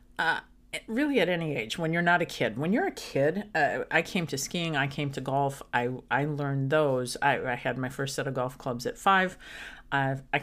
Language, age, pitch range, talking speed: English, 50-69, 130-165 Hz, 230 wpm